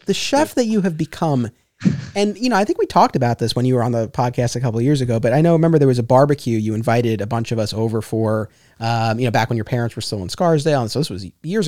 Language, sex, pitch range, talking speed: English, male, 115-145 Hz, 300 wpm